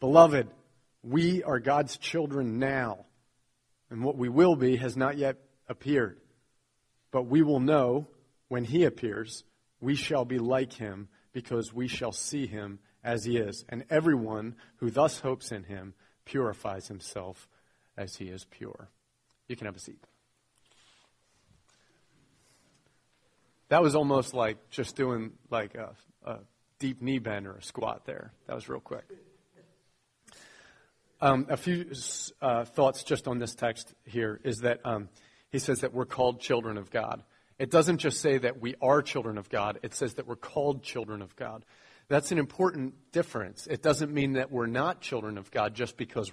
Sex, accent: male, American